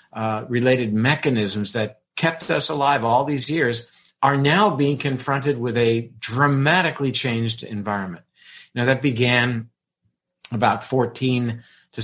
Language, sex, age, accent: English, male, 50-69, American